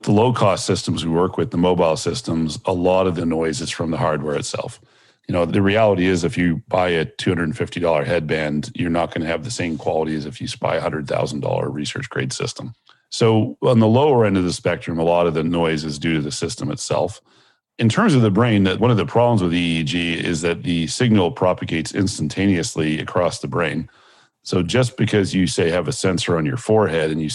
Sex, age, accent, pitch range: male, 40-59, American, 80-105 Hz